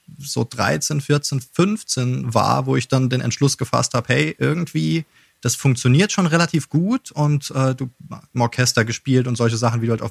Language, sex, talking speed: German, male, 185 wpm